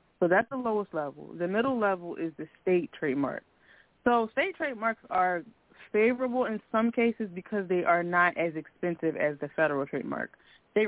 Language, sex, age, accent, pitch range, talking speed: English, female, 20-39, American, 170-215 Hz, 170 wpm